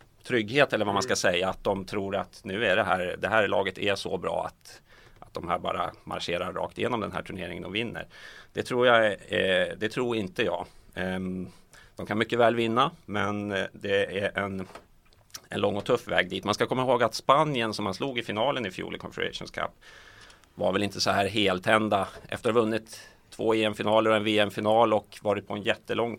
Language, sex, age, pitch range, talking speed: Swedish, male, 30-49, 100-110 Hz, 210 wpm